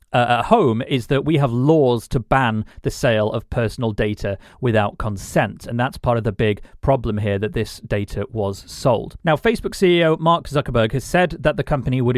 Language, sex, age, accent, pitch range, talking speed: English, male, 40-59, British, 110-135 Hz, 200 wpm